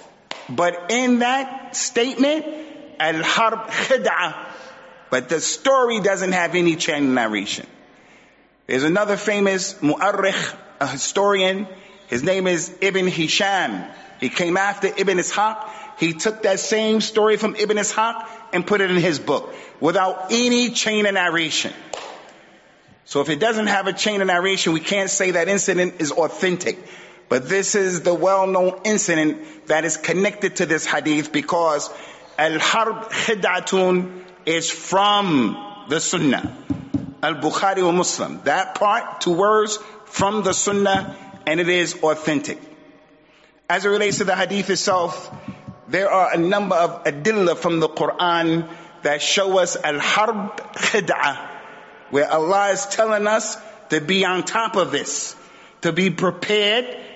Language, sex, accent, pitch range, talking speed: English, male, American, 170-210 Hz, 140 wpm